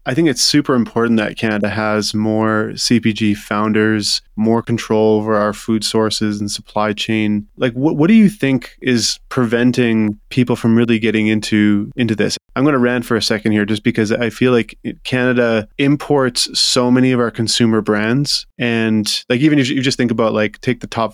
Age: 20-39